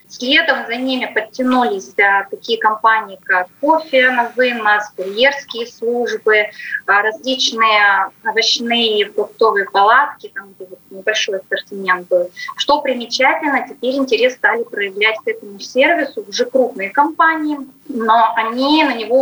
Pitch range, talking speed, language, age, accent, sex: 205-310 Hz, 120 wpm, Russian, 20-39, native, female